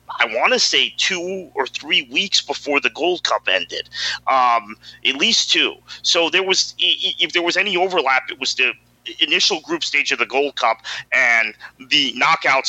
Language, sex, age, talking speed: English, male, 30-49, 180 wpm